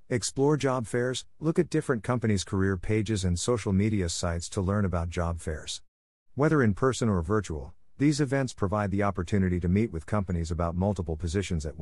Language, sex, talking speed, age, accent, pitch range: English, male, 185 wpm, 50-69, American, 90-115 Hz